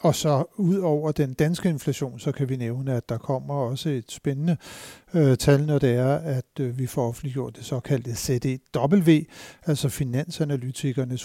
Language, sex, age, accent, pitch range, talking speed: Danish, male, 60-79, native, 130-155 Hz, 170 wpm